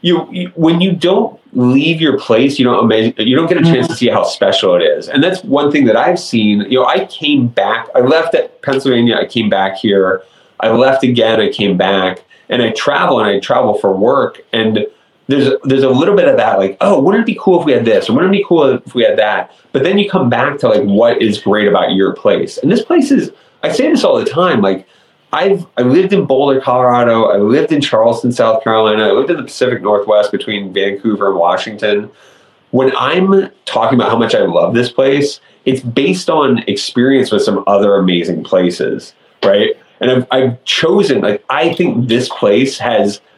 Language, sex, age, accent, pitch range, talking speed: English, male, 30-49, American, 110-165 Hz, 220 wpm